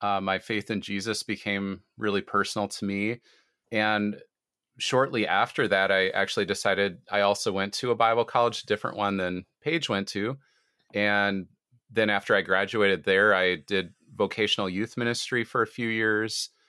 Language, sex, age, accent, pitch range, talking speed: English, male, 30-49, American, 95-110 Hz, 165 wpm